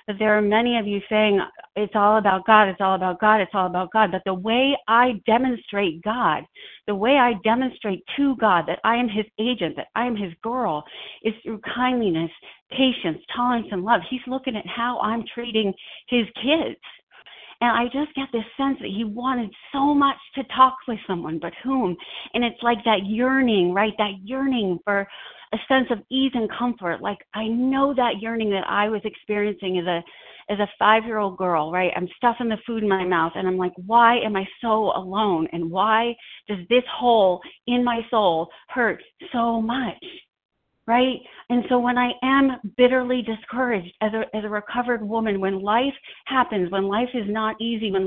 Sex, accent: female, American